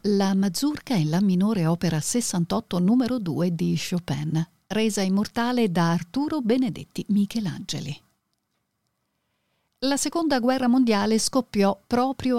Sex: female